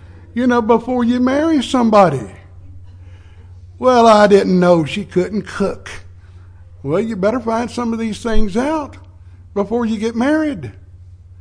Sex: male